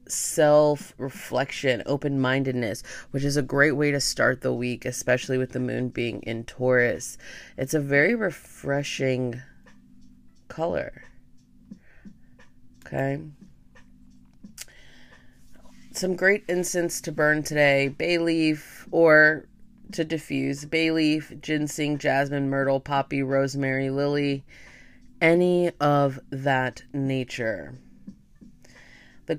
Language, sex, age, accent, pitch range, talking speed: English, female, 30-49, American, 130-155 Hz, 100 wpm